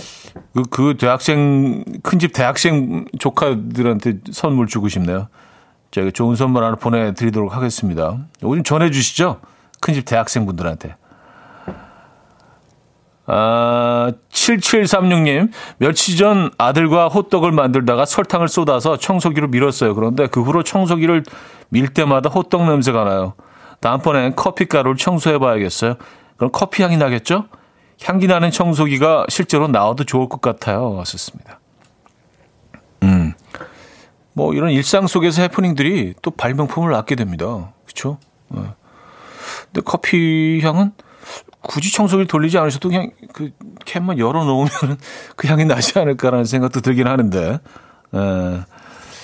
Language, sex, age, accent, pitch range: Korean, male, 40-59, native, 115-170 Hz